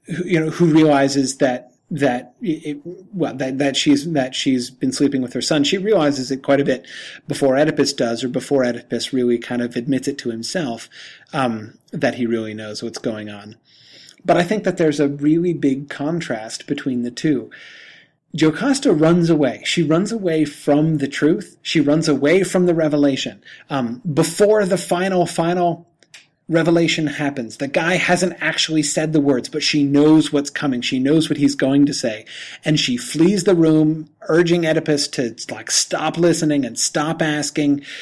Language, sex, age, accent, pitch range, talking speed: English, male, 30-49, American, 140-170 Hz, 175 wpm